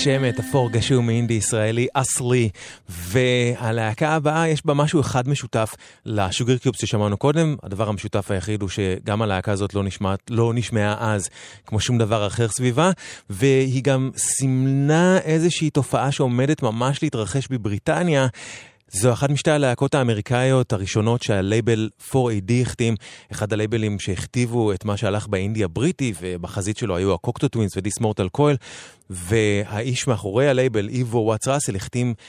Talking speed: 135 wpm